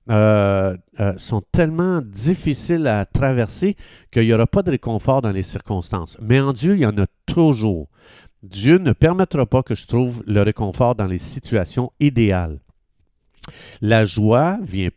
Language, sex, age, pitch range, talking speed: French, male, 50-69, 105-140 Hz, 165 wpm